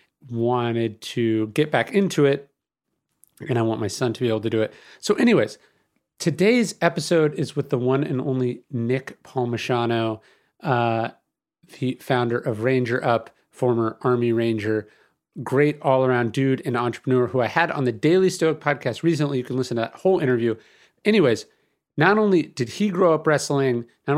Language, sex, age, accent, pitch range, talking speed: English, male, 30-49, American, 120-155 Hz, 165 wpm